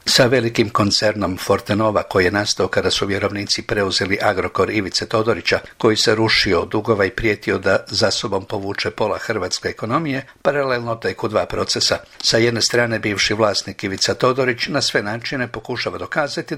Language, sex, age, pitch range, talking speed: Croatian, male, 60-79, 110-130 Hz, 150 wpm